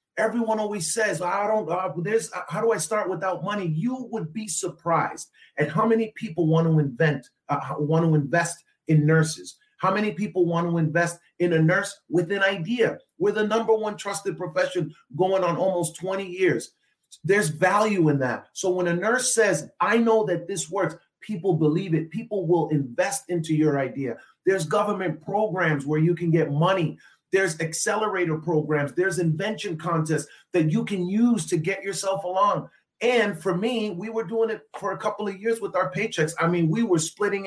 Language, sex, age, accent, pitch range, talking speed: English, male, 30-49, American, 155-200 Hz, 190 wpm